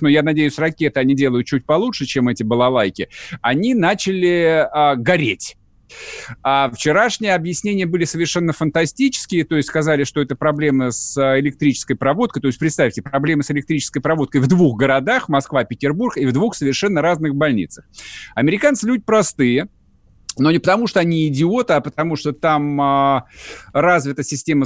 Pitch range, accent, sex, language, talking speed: 140-170 Hz, native, male, Russian, 155 wpm